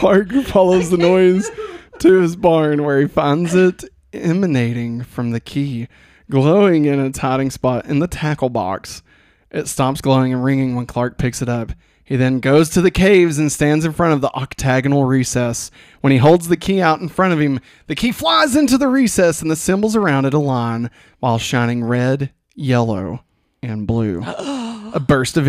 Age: 20-39